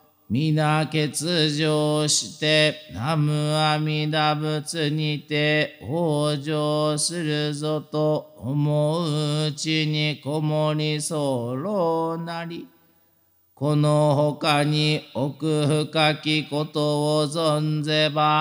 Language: Japanese